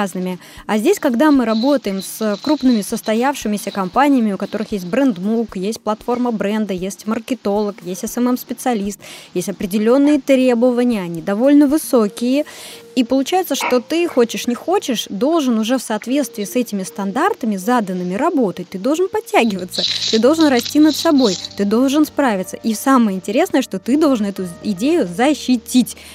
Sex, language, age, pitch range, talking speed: female, Russian, 20-39, 210-265 Hz, 145 wpm